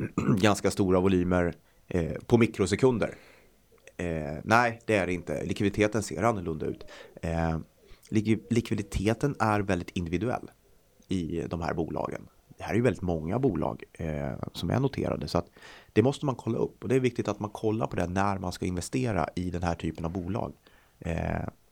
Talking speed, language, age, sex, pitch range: 165 wpm, Swedish, 30-49, male, 85-110 Hz